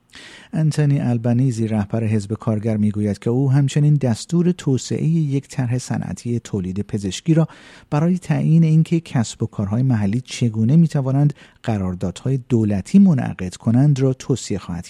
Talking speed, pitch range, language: 135 wpm, 110-150 Hz, Persian